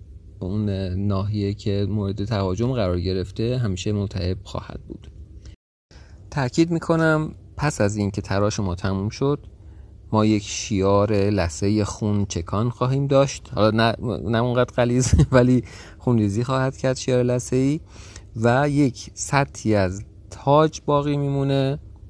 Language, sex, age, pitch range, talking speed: Persian, male, 40-59, 95-120 Hz, 120 wpm